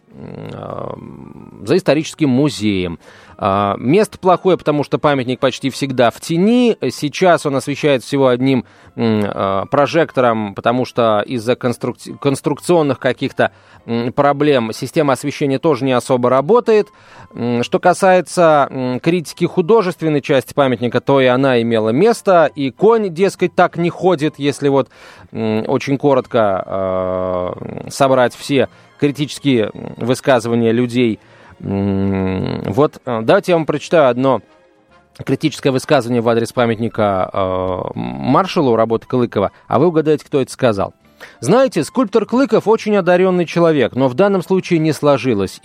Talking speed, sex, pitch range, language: 115 wpm, male, 115-160 Hz, Russian